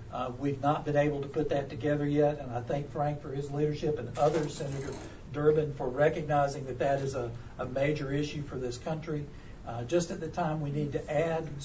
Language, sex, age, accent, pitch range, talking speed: English, male, 60-79, American, 130-155 Hz, 215 wpm